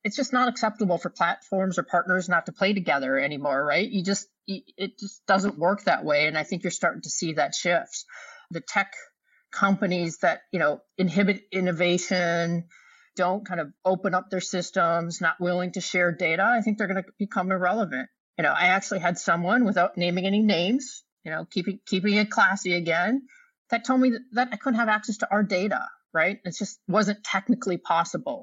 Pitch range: 170-205 Hz